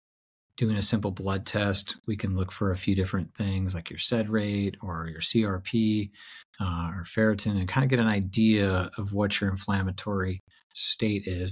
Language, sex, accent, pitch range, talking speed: English, male, American, 90-105 Hz, 180 wpm